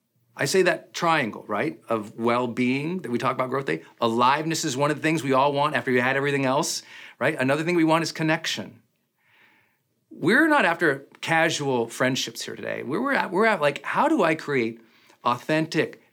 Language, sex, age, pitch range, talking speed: English, male, 40-59, 130-180 Hz, 190 wpm